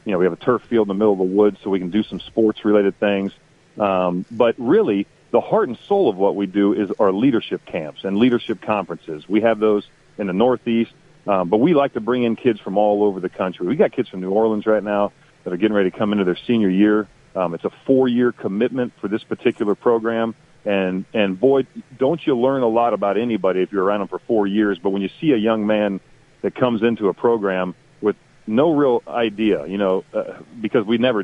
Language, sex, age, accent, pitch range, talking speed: English, male, 40-59, American, 100-125 Hz, 235 wpm